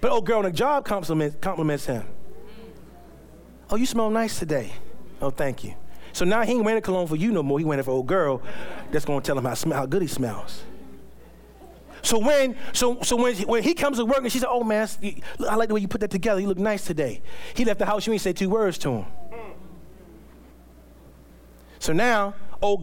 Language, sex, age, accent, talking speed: English, male, 30-49, American, 230 wpm